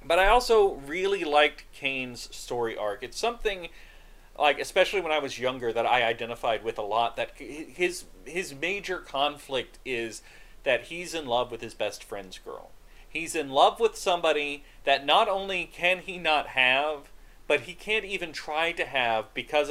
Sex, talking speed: male, 175 wpm